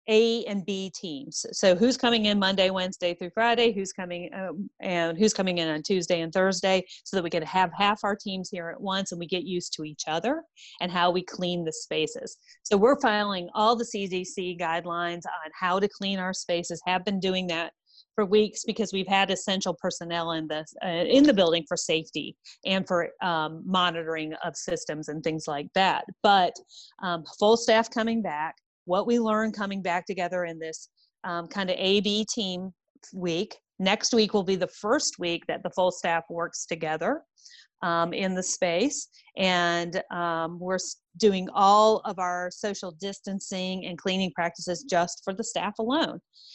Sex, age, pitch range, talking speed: female, 40-59, 175-210 Hz, 185 wpm